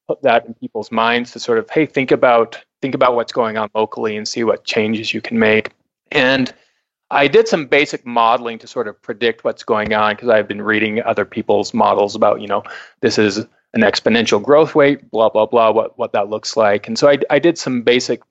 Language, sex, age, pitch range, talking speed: English, male, 20-39, 110-140 Hz, 225 wpm